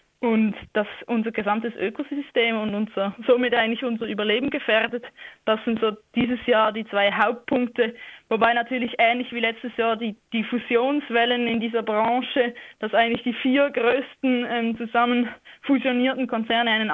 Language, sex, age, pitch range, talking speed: German, female, 20-39, 220-245 Hz, 150 wpm